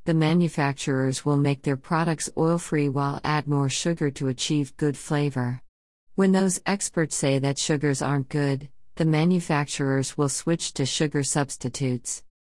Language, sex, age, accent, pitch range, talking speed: English, female, 50-69, American, 135-165 Hz, 145 wpm